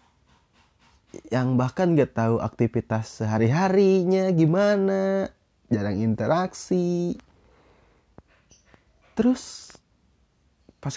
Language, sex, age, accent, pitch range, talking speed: Indonesian, male, 20-39, native, 110-165 Hz, 60 wpm